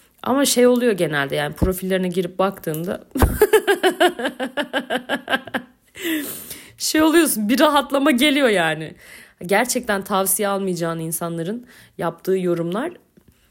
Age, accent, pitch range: 40-59, native, 175-255 Hz